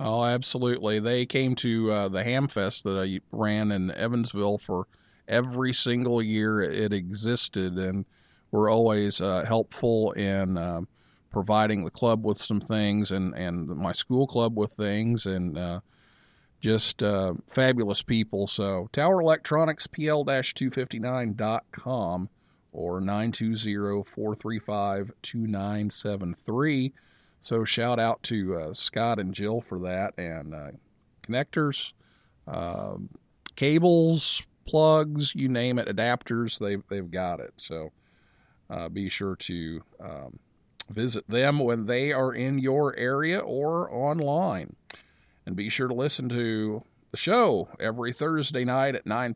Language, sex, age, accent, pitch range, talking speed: English, male, 50-69, American, 100-125 Hz, 130 wpm